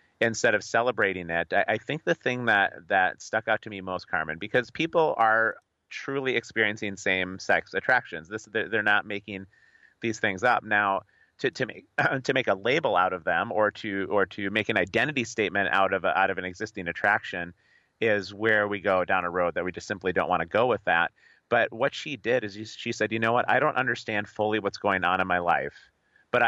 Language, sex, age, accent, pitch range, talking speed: English, male, 30-49, American, 95-115 Hz, 215 wpm